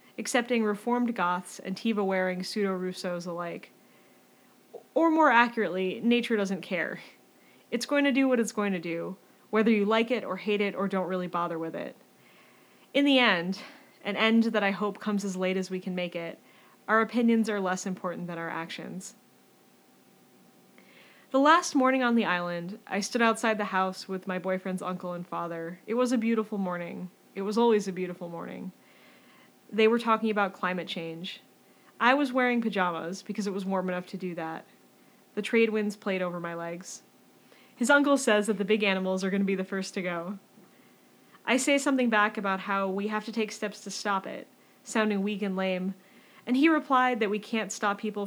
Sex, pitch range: female, 185-230 Hz